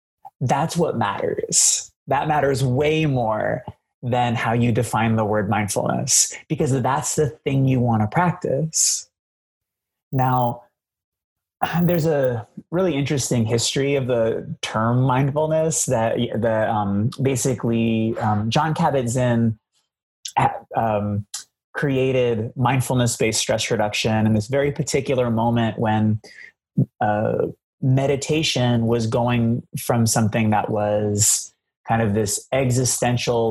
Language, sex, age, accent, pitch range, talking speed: English, male, 30-49, American, 110-135 Hz, 115 wpm